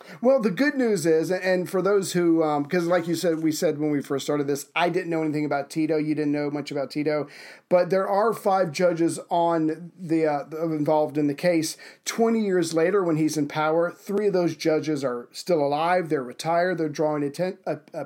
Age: 40-59